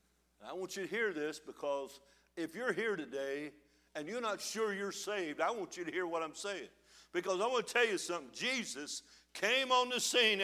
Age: 60-79